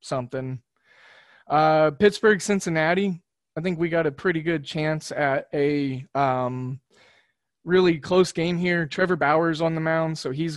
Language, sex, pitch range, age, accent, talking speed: English, male, 145-175 Hz, 20-39, American, 150 wpm